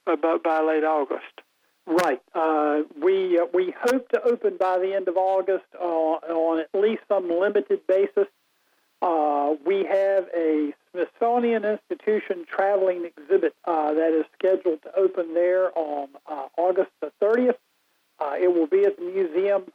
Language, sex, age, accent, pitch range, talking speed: English, male, 50-69, American, 165-205 Hz, 155 wpm